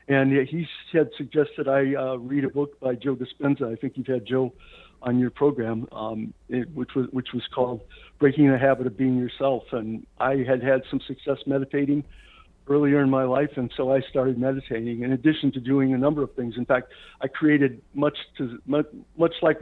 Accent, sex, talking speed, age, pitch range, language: American, male, 200 wpm, 60-79, 130-145 Hz, English